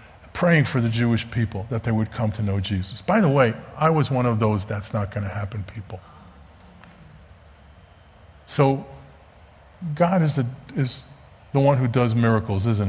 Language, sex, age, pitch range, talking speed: English, male, 50-69, 105-150 Hz, 170 wpm